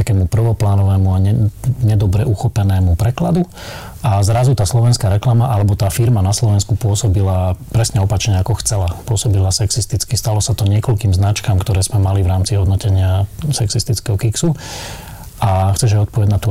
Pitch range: 100-115 Hz